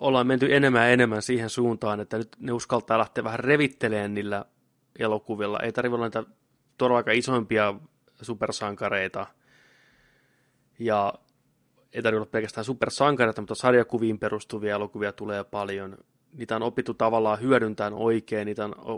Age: 20-39